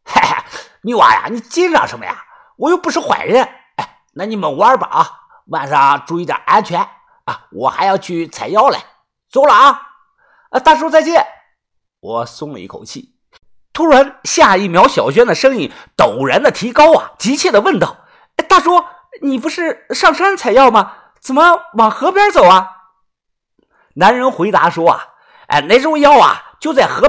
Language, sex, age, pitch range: Chinese, male, 50-69, 230-370 Hz